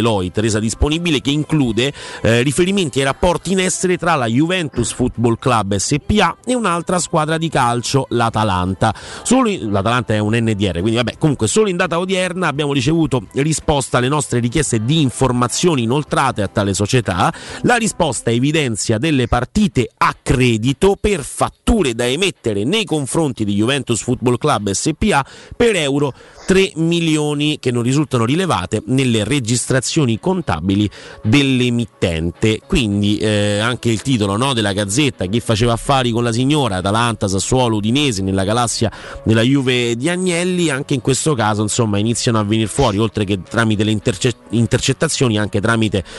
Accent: native